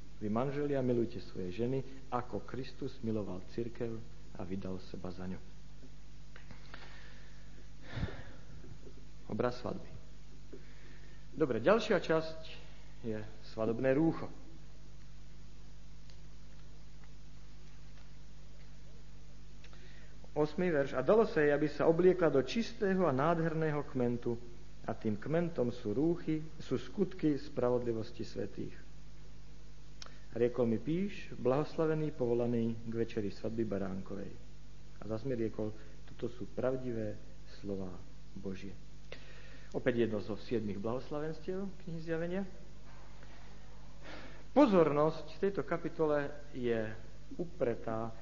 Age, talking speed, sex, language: 50-69, 95 wpm, male, Slovak